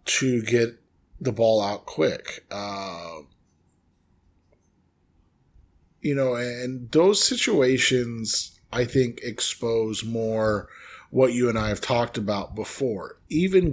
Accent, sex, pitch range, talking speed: American, male, 95-115 Hz, 110 wpm